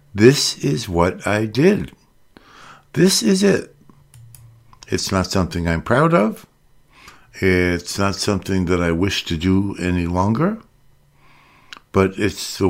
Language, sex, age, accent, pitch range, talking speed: English, male, 60-79, American, 85-110 Hz, 130 wpm